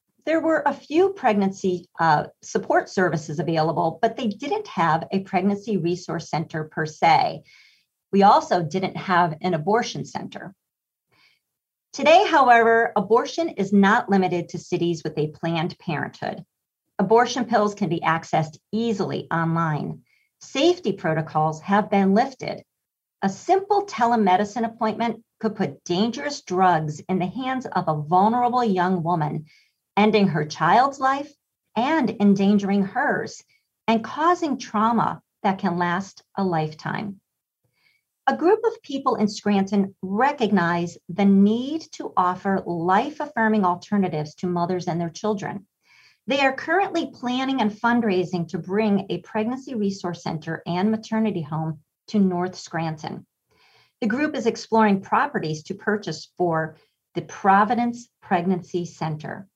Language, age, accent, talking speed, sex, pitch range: English, 50-69, American, 130 wpm, female, 175-230 Hz